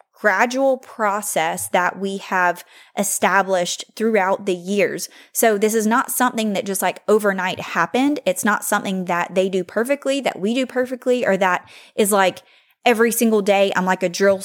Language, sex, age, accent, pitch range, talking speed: English, female, 20-39, American, 185-230 Hz, 170 wpm